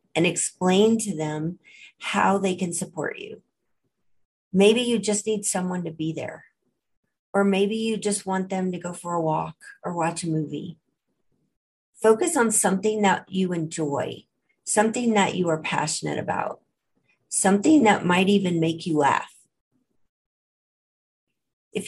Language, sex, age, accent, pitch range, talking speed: English, female, 40-59, American, 160-205 Hz, 145 wpm